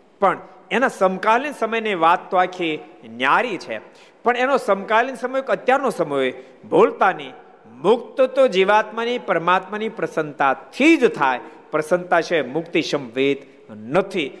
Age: 50-69